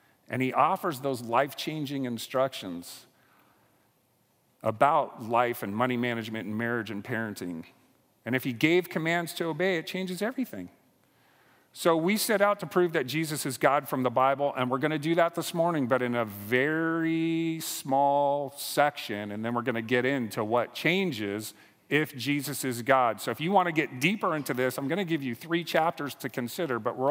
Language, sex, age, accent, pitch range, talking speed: English, male, 40-59, American, 125-165 Hz, 190 wpm